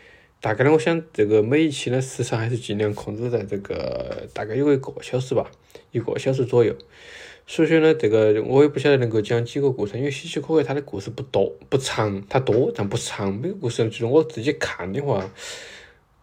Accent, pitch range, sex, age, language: native, 105-140 Hz, male, 20-39, Chinese